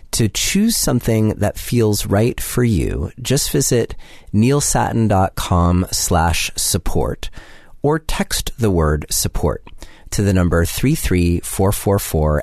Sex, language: male, English